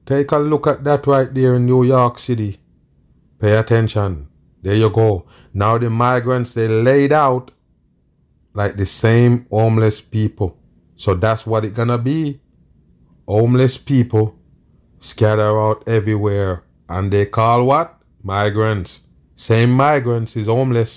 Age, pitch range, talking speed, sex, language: 30-49, 100-125 Hz, 135 wpm, male, English